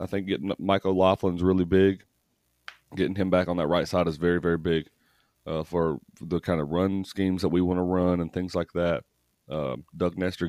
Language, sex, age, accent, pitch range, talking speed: English, male, 30-49, American, 80-95 Hz, 210 wpm